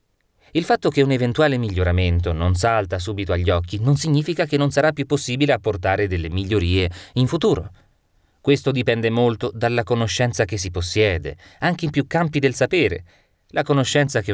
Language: Italian